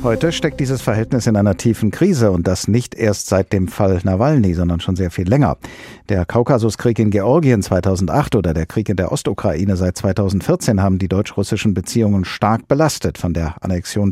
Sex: male